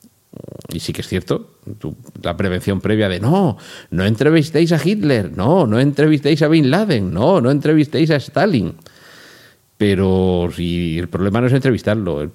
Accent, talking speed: Spanish, 160 wpm